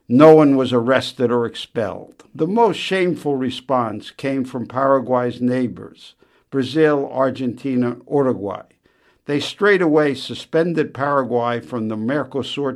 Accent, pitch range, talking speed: American, 125-155 Hz, 115 wpm